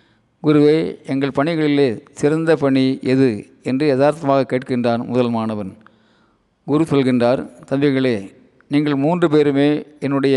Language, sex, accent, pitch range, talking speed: Tamil, male, native, 120-145 Hz, 105 wpm